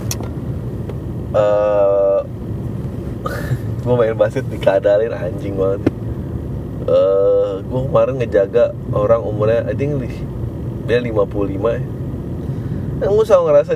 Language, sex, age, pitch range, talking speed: Indonesian, male, 20-39, 115-140 Hz, 100 wpm